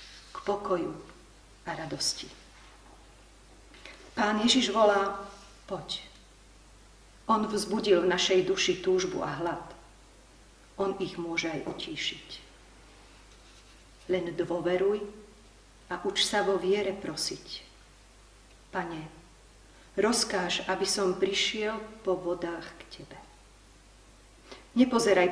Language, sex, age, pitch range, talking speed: Slovak, female, 40-59, 170-210 Hz, 90 wpm